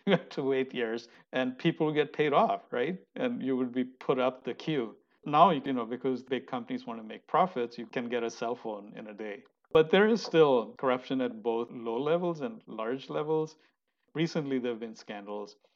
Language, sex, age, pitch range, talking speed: English, male, 50-69, 115-145 Hz, 210 wpm